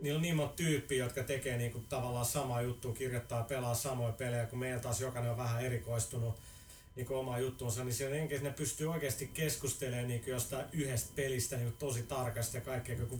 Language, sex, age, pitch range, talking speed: Finnish, male, 30-49, 120-145 Hz, 185 wpm